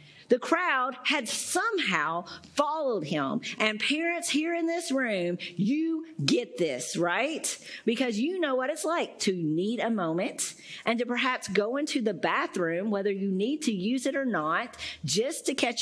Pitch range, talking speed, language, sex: 205-290 Hz, 165 wpm, English, female